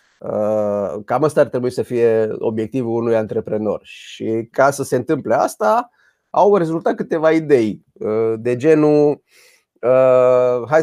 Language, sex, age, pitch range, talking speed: Romanian, male, 30-49, 120-170 Hz, 120 wpm